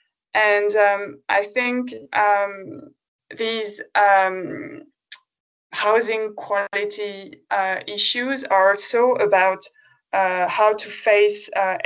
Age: 20-39